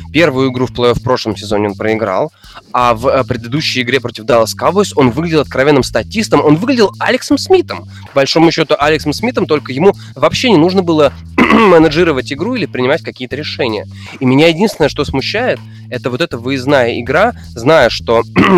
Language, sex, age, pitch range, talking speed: Russian, male, 20-39, 115-150 Hz, 170 wpm